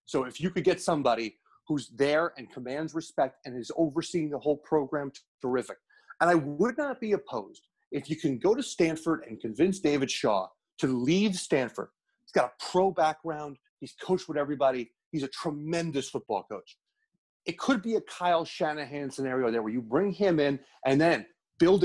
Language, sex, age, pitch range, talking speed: English, male, 30-49, 135-180 Hz, 185 wpm